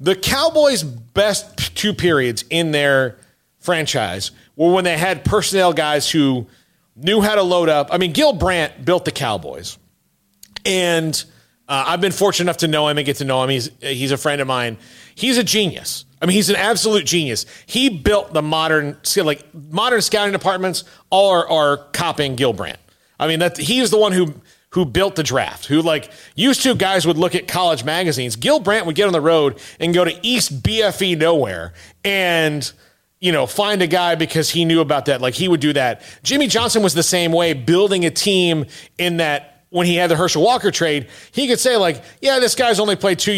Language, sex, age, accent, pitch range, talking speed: English, male, 40-59, American, 150-195 Hz, 205 wpm